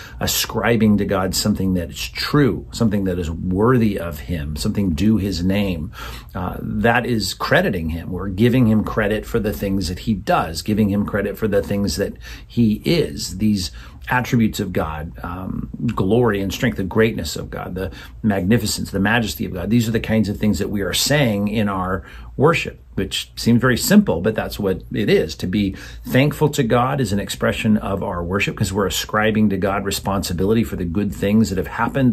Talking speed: 195 wpm